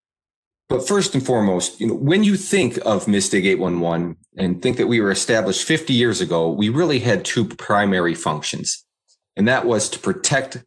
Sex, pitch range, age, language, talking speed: male, 95-120 Hz, 30-49, English, 180 wpm